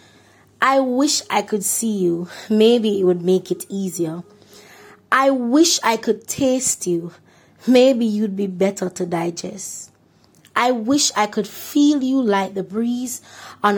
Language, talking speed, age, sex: English, 150 wpm, 20-39, female